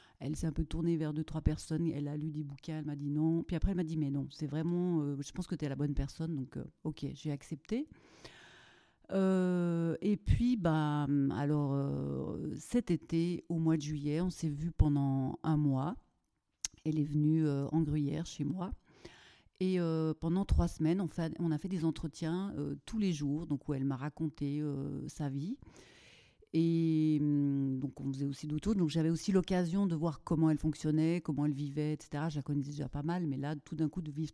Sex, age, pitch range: female, 40-59, 145-170 Hz